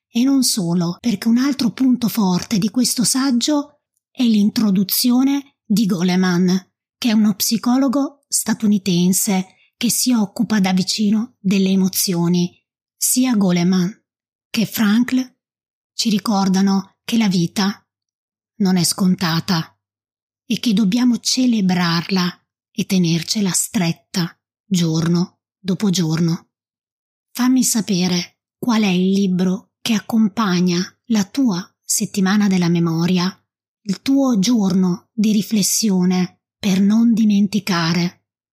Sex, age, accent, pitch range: female, 20-39, native, 185-230 Hz